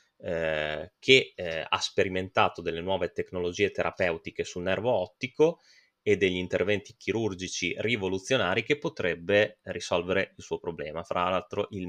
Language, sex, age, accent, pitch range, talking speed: Italian, male, 20-39, native, 90-125 Hz, 125 wpm